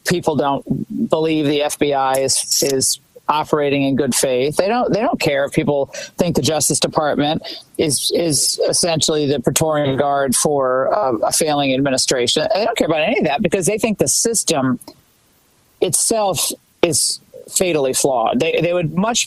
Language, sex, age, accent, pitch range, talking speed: English, male, 40-59, American, 135-170 Hz, 165 wpm